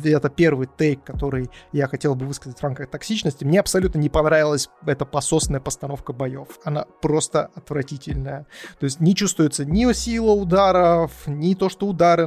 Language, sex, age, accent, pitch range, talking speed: Russian, male, 20-39, native, 140-170 Hz, 160 wpm